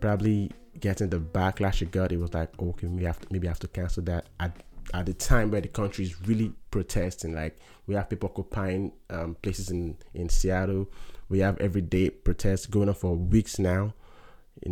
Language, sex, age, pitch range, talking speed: English, male, 20-39, 85-105 Hz, 190 wpm